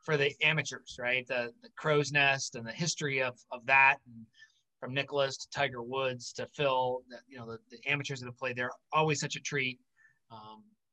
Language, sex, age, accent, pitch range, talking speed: English, male, 30-49, American, 130-160 Hz, 205 wpm